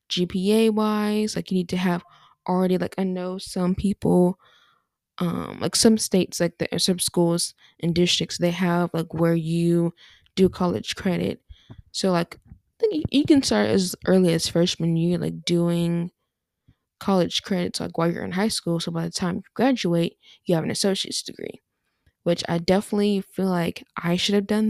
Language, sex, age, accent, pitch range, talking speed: English, female, 10-29, American, 170-200 Hz, 180 wpm